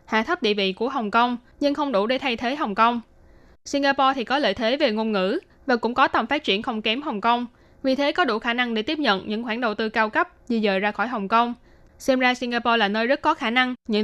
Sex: female